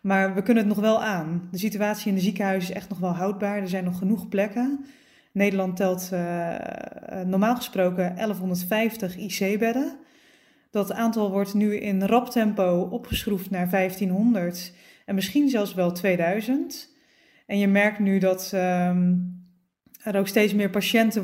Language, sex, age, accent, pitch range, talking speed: Dutch, female, 20-39, Dutch, 190-230 Hz, 155 wpm